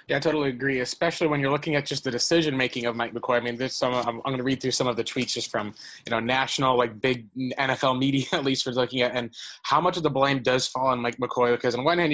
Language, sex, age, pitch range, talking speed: English, male, 20-39, 115-135 Hz, 290 wpm